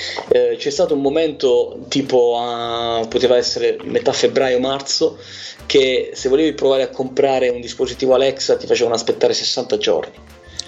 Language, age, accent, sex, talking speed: Italian, 30-49, native, male, 145 wpm